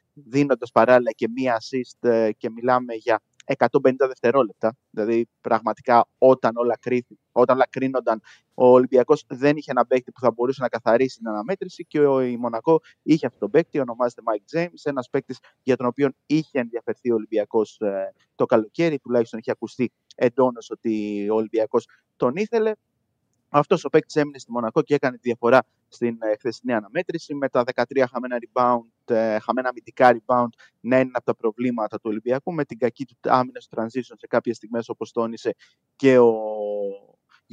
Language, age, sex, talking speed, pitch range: Greek, 30-49, male, 165 wpm, 115-140 Hz